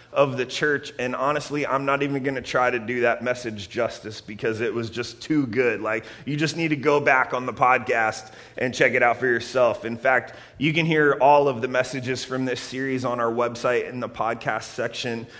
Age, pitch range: 30-49, 125-175 Hz